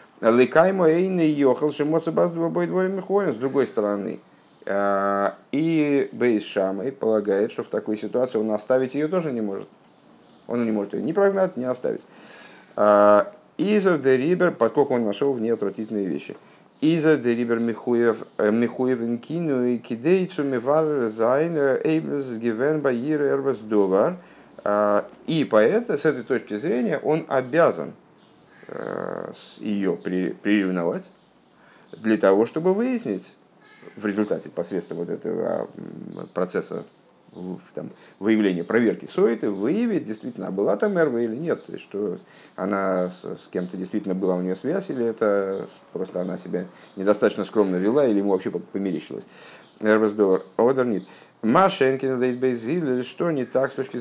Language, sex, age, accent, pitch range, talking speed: Russian, male, 50-69, native, 105-150 Hz, 120 wpm